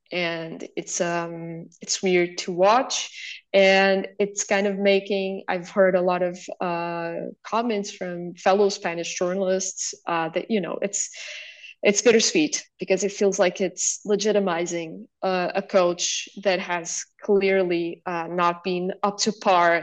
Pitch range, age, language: 175-205 Hz, 20-39, English